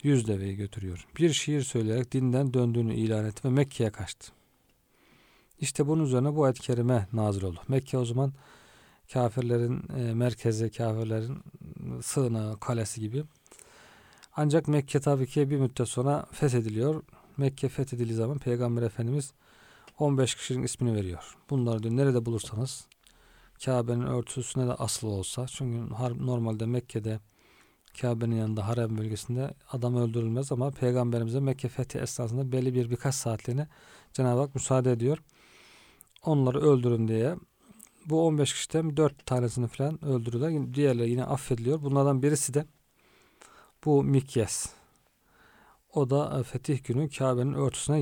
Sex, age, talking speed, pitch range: male, 40-59, 130 wpm, 115-140 Hz